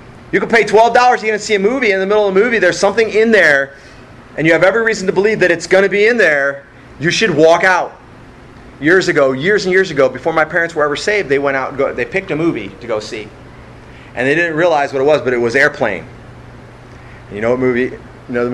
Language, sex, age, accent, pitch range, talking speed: English, male, 30-49, American, 125-175 Hz, 265 wpm